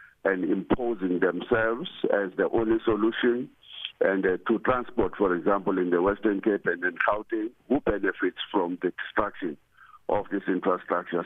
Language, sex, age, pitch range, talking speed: English, male, 50-69, 100-125 Hz, 150 wpm